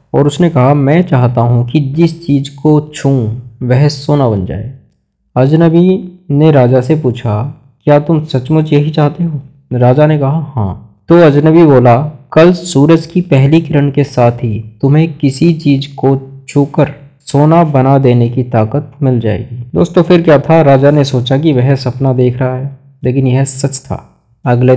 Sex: male